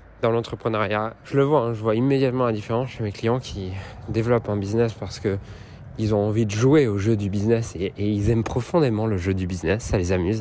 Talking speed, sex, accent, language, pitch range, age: 230 wpm, male, French, French, 95-115 Hz, 20-39